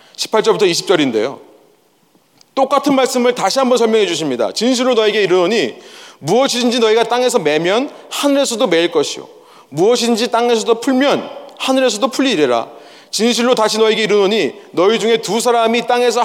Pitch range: 220-280 Hz